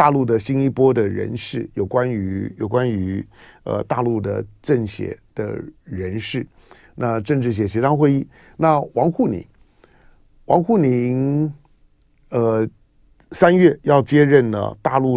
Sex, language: male, Chinese